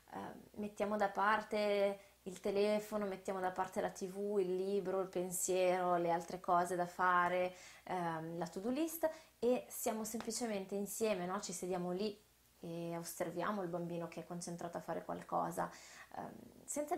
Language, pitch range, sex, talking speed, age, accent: Italian, 180-215 Hz, female, 155 wpm, 20-39, native